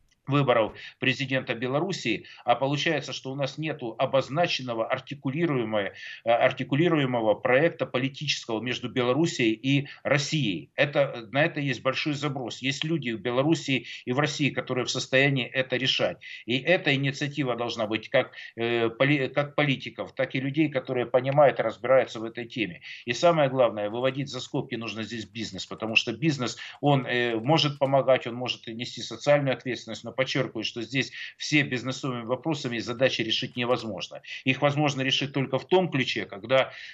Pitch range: 120-140 Hz